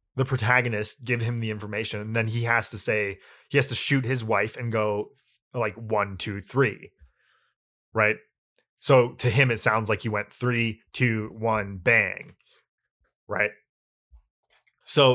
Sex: male